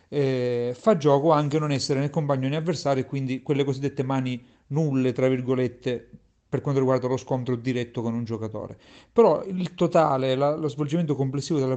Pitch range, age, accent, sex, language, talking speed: 125-155 Hz, 40-59, native, male, Italian, 175 wpm